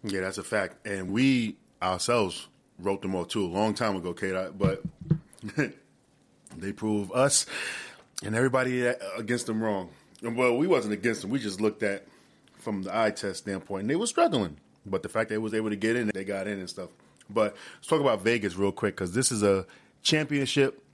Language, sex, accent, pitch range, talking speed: English, male, American, 100-120 Hz, 205 wpm